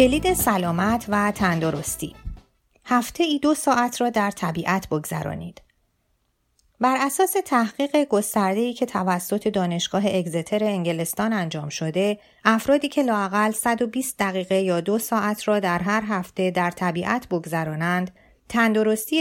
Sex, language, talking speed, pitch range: female, Persian, 120 wpm, 175-230 Hz